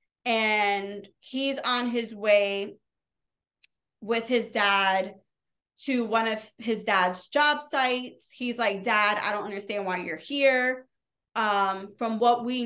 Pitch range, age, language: 205-240 Hz, 20-39, English